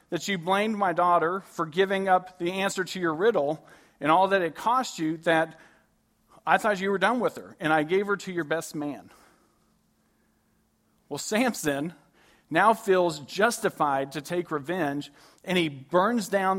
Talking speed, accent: 170 wpm, American